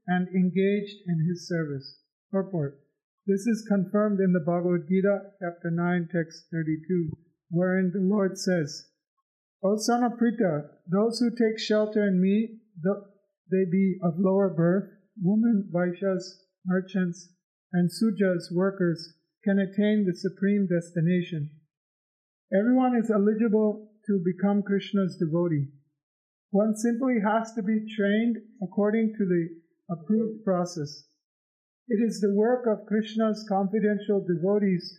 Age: 50-69